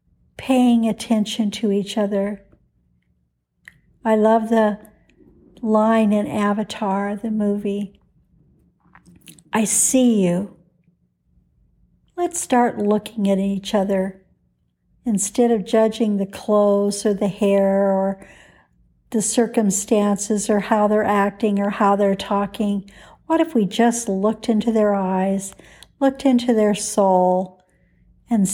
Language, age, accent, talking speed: English, 60-79, American, 115 wpm